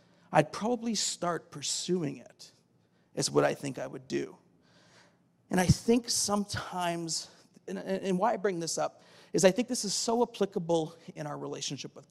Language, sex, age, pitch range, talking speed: English, male, 40-59, 155-200 Hz, 170 wpm